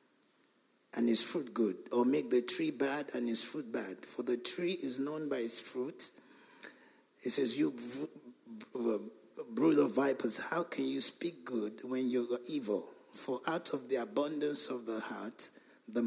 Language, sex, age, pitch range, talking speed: English, male, 50-69, 120-145 Hz, 170 wpm